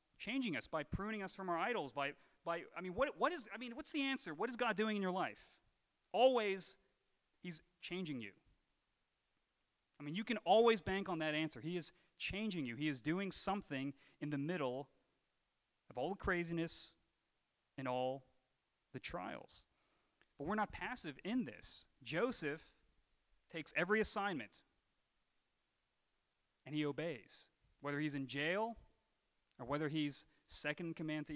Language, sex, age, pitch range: English, male, 30-49, 145-190 Hz